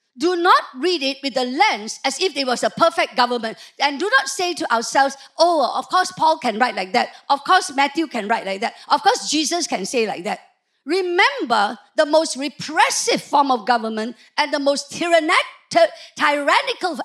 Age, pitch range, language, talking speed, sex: 50-69, 230-335 Hz, English, 185 wpm, female